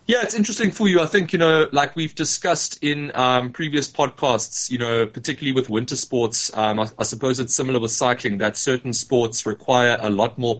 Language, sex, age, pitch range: English, male, 20-39, 105-125 Hz